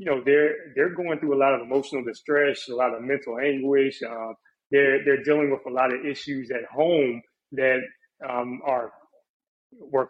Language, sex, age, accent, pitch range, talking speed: English, male, 30-49, American, 125-150 Hz, 185 wpm